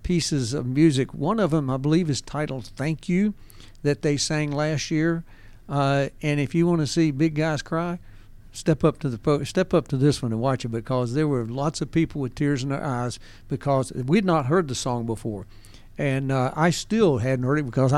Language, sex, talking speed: English, male, 215 wpm